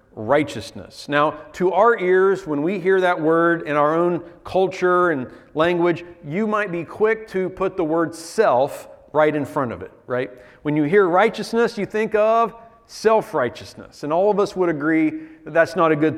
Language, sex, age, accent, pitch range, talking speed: English, male, 40-59, American, 145-190 Hz, 185 wpm